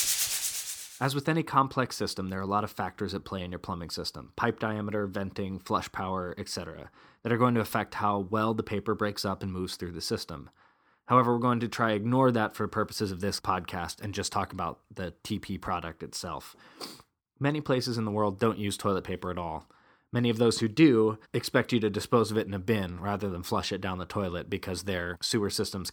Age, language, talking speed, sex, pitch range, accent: 20-39, English, 220 wpm, male, 95-120 Hz, American